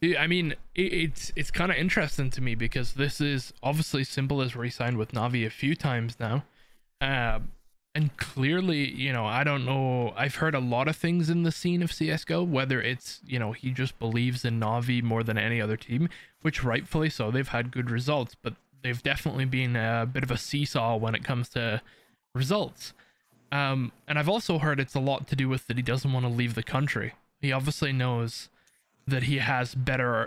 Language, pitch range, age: English, 120-145 Hz, 20-39